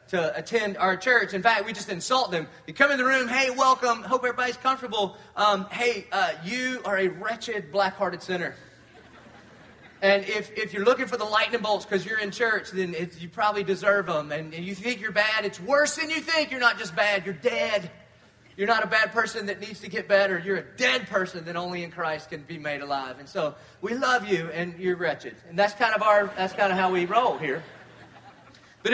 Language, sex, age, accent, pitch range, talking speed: English, male, 30-49, American, 190-245 Hz, 225 wpm